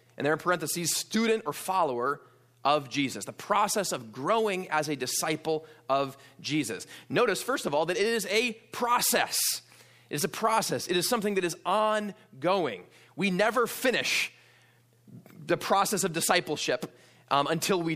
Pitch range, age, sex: 155-215 Hz, 20-39, male